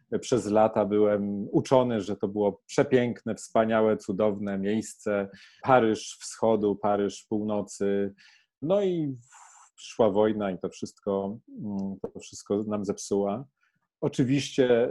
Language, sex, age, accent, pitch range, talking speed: Polish, male, 30-49, native, 105-130 Hz, 110 wpm